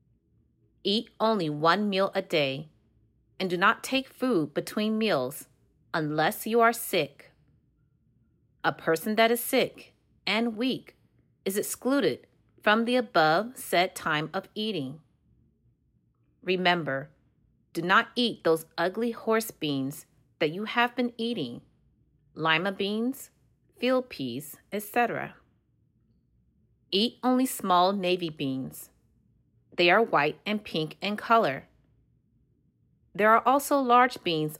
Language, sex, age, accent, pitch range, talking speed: English, female, 30-49, American, 155-235 Hz, 120 wpm